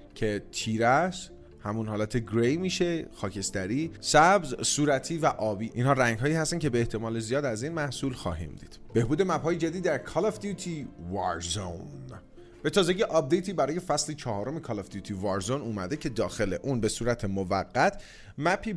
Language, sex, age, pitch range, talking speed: Persian, male, 30-49, 110-165 Hz, 165 wpm